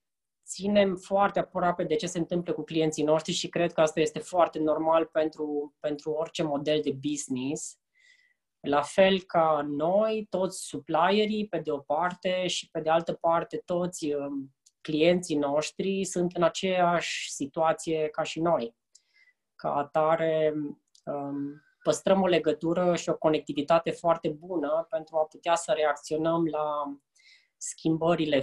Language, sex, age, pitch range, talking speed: Romanian, female, 20-39, 155-185 Hz, 135 wpm